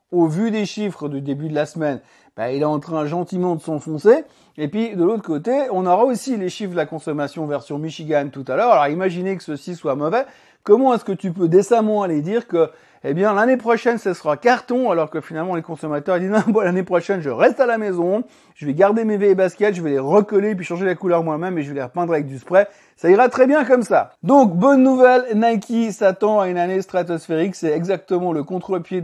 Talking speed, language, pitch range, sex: 240 wpm, French, 170-220 Hz, male